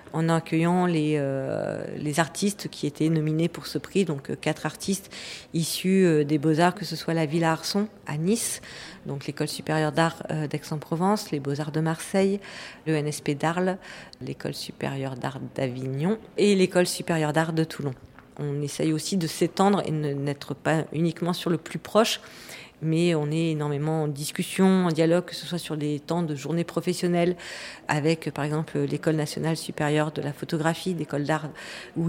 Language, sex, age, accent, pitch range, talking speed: English, female, 40-59, French, 155-175 Hz, 170 wpm